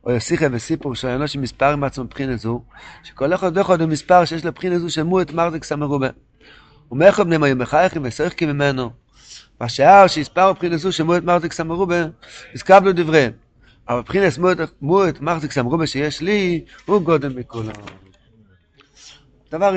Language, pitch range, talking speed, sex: Hebrew, 135-175 Hz, 160 wpm, male